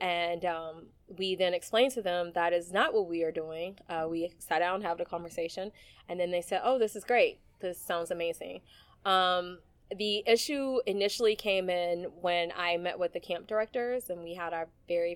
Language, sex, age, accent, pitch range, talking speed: English, female, 20-39, American, 170-200 Hz, 200 wpm